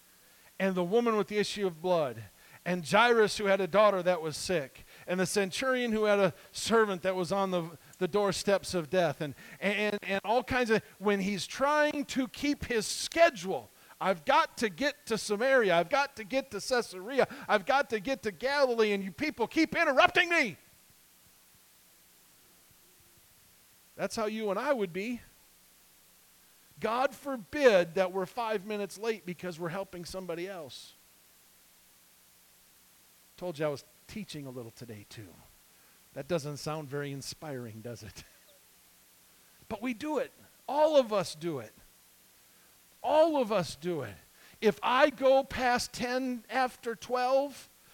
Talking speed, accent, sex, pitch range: 155 wpm, American, male, 175-250 Hz